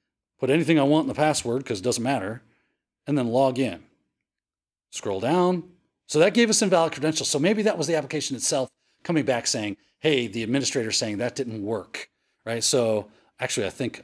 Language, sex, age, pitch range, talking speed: English, male, 40-59, 110-155 Hz, 190 wpm